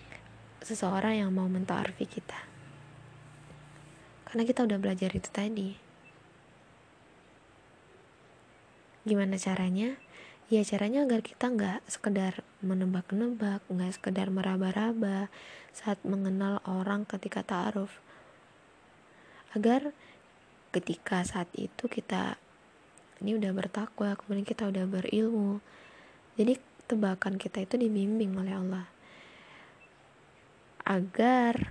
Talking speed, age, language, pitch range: 95 wpm, 20-39, Indonesian, 185-210 Hz